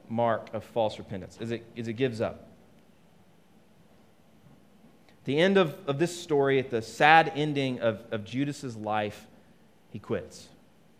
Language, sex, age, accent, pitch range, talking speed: English, male, 30-49, American, 115-165 Hz, 140 wpm